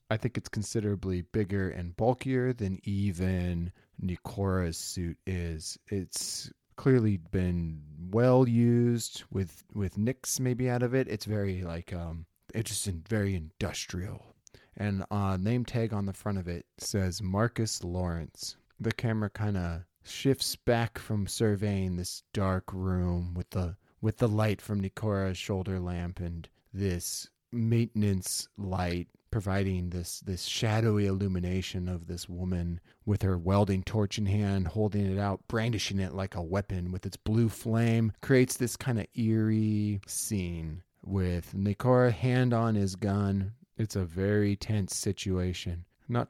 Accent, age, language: American, 30-49, English